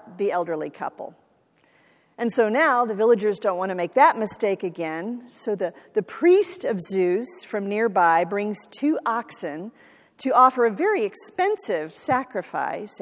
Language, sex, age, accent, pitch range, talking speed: English, female, 50-69, American, 200-260 Hz, 150 wpm